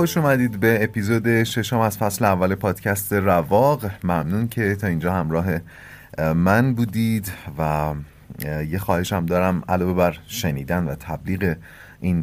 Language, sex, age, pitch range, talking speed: Persian, male, 30-49, 85-120 Hz, 135 wpm